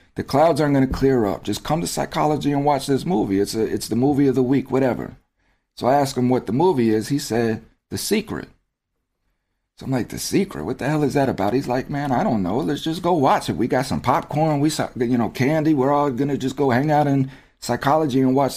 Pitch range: 110-140 Hz